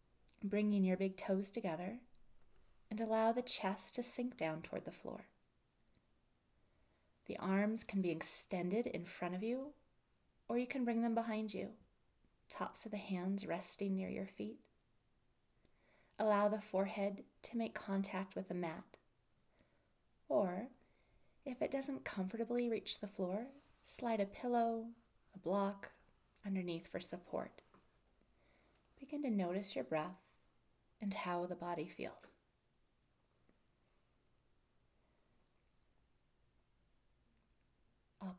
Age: 30-49